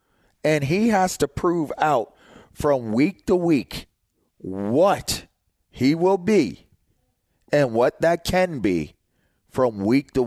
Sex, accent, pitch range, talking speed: male, American, 100-135 Hz, 130 wpm